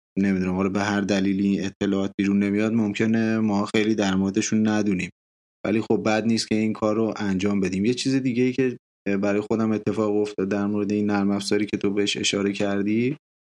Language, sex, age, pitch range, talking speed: Persian, male, 20-39, 100-110 Hz, 190 wpm